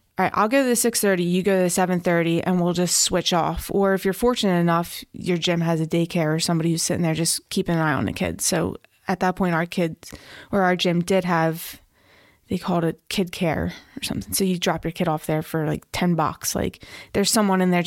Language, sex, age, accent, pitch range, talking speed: English, female, 20-39, American, 170-195 Hz, 245 wpm